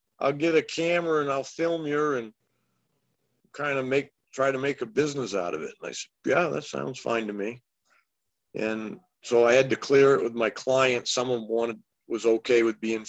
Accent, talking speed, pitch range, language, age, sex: American, 215 wpm, 120-160 Hz, English, 50-69, male